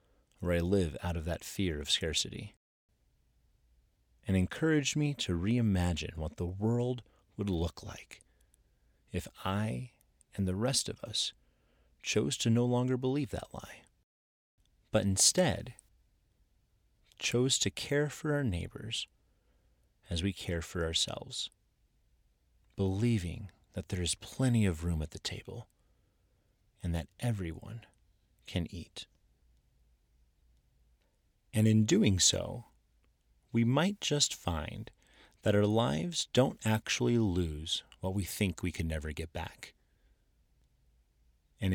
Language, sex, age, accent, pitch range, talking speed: English, male, 30-49, American, 80-110 Hz, 120 wpm